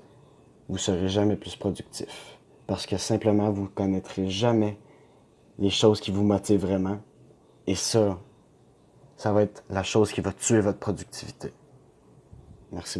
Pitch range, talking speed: 100-120 Hz, 150 wpm